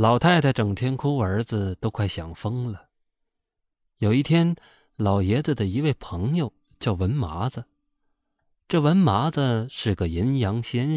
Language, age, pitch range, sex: Chinese, 20-39, 100-140 Hz, male